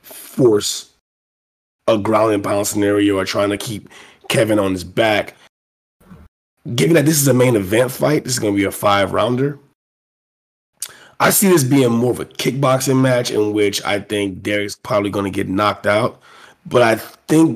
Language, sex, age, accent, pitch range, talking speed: English, male, 30-49, American, 100-120 Hz, 180 wpm